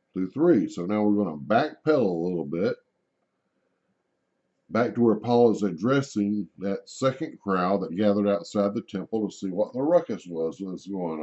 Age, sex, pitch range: 60-79, male, 95-120 Hz